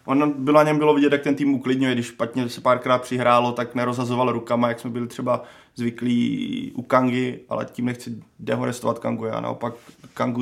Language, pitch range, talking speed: Czech, 120-135 Hz, 185 wpm